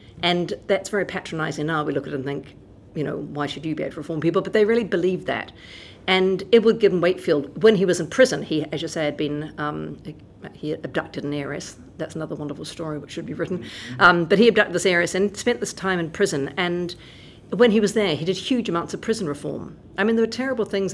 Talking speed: 245 wpm